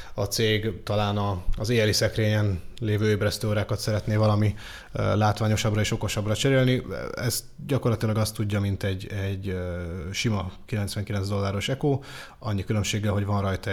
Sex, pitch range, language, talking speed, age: male, 100-115 Hz, Hungarian, 130 wpm, 20-39